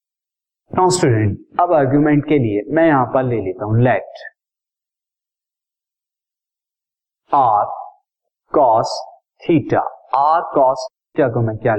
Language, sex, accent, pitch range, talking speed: Hindi, male, native, 115-145 Hz, 105 wpm